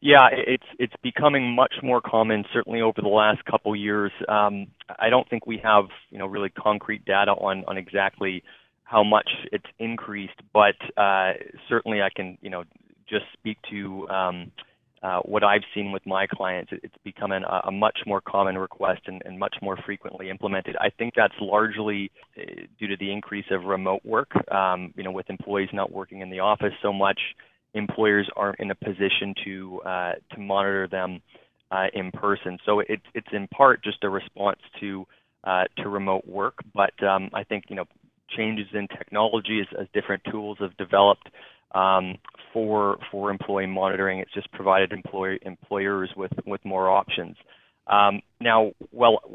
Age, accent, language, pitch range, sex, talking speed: 20-39, American, English, 95-105 Hz, male, 175 wpm